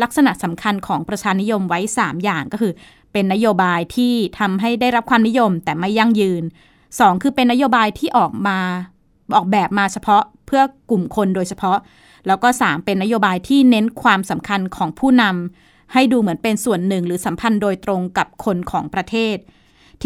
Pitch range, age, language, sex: 185-235 Hz, 20-39, Thai, female